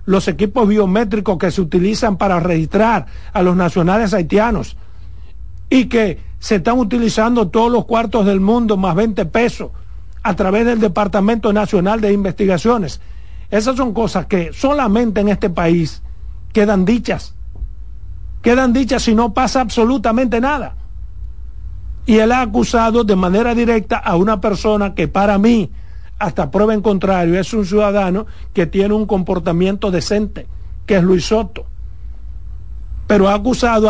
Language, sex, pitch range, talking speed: Spanish, male, 170-225 Hz, 145 wpm